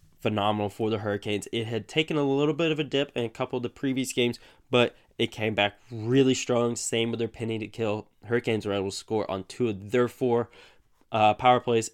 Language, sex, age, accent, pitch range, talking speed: English, male, 10-29, American, 100-120 Hz, 225 wpm